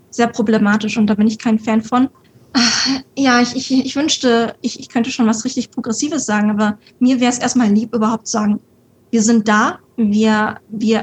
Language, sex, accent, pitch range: German, female, German, 220-250 Hz